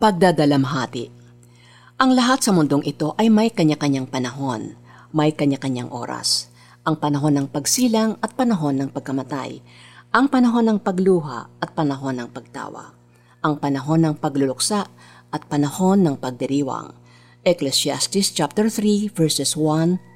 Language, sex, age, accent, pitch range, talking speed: Filipino, female, 50-69, native, 130-185 Hz, 125 wpm